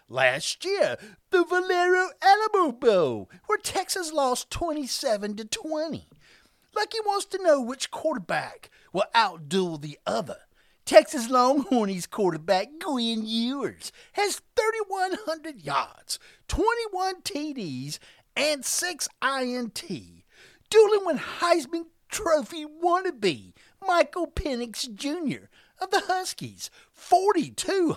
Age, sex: 50-69, male